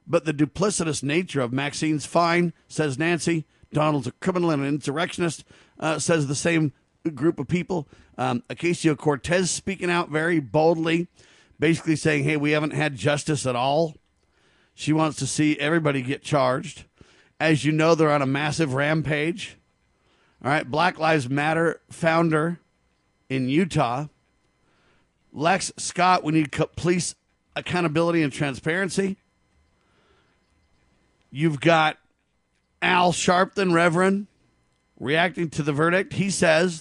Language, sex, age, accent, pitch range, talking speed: English, male, 50-69, American, 150-180 Hz, 130 wpm